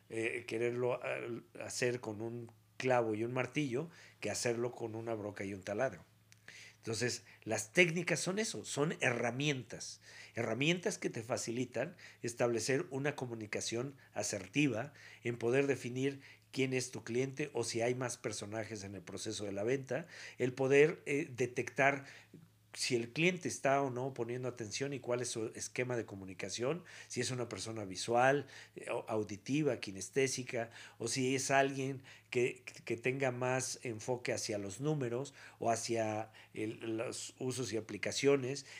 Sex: male